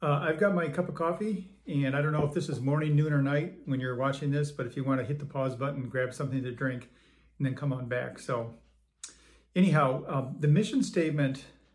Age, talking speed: 50-69, 235 wpm